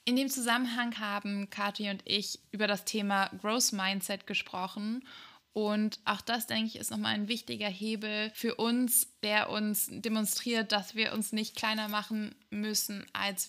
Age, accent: 20-39, German